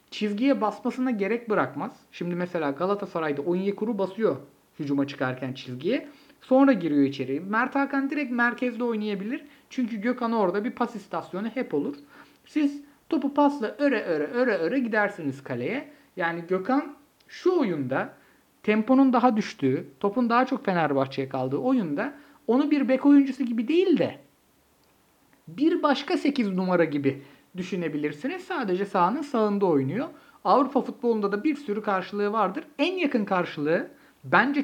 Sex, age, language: male, 50-69, Turkish